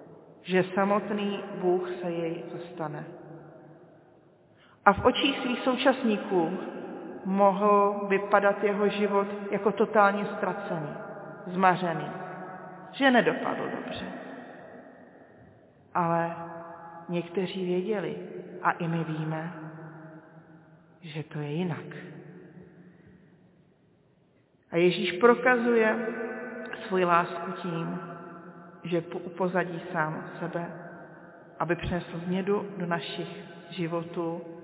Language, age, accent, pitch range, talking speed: Czech, 40-59, native, 170-200 Hz, 85 wpm